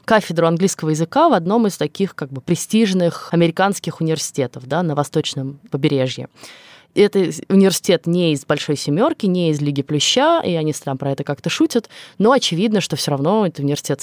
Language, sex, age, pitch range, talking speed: Russian, female, 20-39, 145-195 Hz, 175 wpm